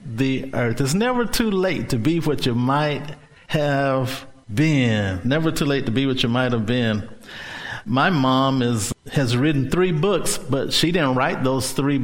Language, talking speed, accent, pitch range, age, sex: English, 180 wpm, American, 130-155 Hz, 50-69, male